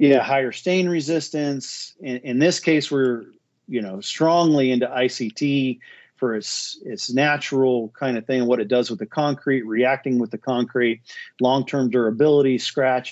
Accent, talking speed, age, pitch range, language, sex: American, 155 wpm, 40-59, 115-145 Hz, English, male